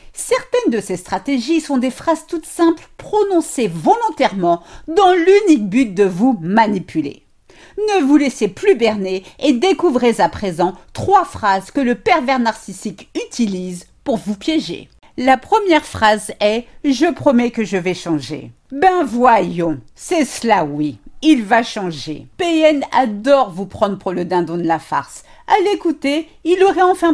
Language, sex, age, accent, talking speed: French, female, 50-69, French, 155 wpm